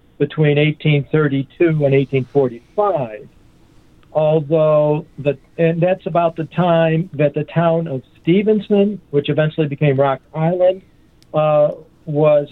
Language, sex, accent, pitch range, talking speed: English, male, American, 145-170 Hz, 110 wpm